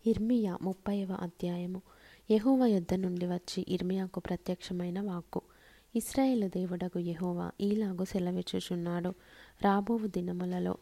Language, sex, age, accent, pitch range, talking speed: Telugu, female, 20-39, native, 180-205 Hz, 95 wpm